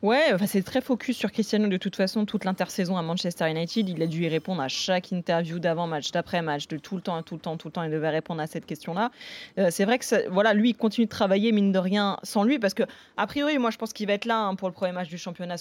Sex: female